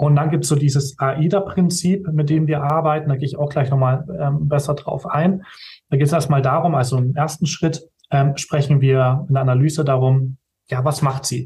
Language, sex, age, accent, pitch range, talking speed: German, male, 30-49, German, 135-170 Hz, 215 wpm